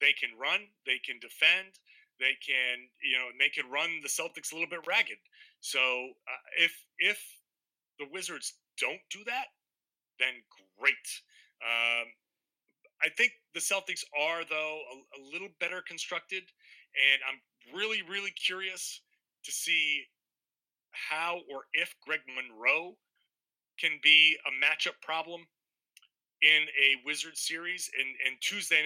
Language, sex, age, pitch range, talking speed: English, male, 30-49, 135-180 Hz, 135 wpm